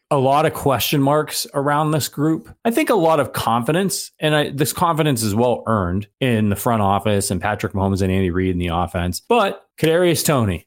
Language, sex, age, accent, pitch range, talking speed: English, male, 30-49, American, 105-160 Hz, 210 wpm